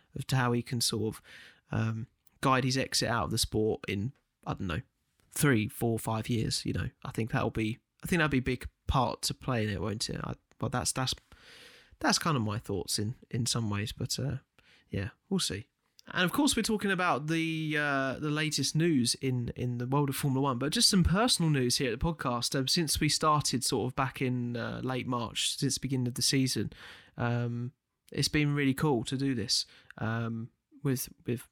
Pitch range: 120-160 Hz